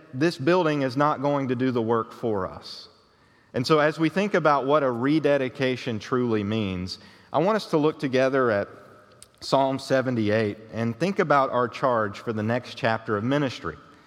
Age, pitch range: 40-59, 110-140 Hz